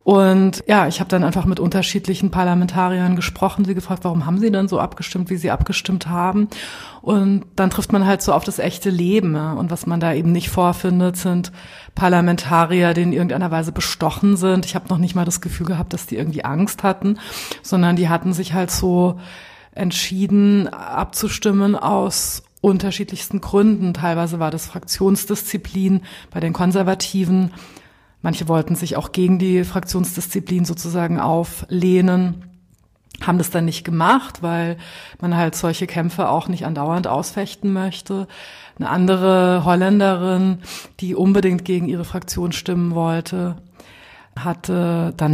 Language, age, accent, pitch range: German, 30-49, German, 175-195 Hz